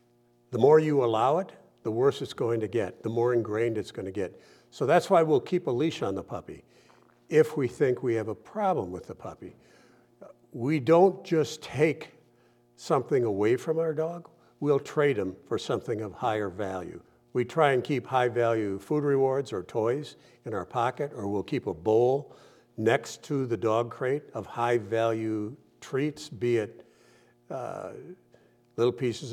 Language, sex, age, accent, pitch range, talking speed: English, male, 60-79, American, 110-140 Hz, 180 wpm